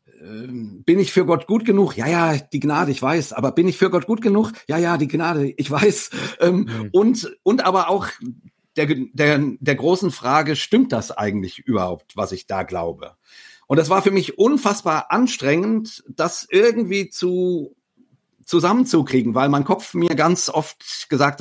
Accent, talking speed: German, 170 wpm